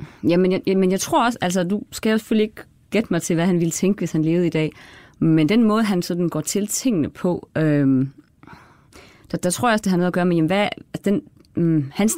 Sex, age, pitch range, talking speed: female, 30-49, 150-195 Hz, 240 wpm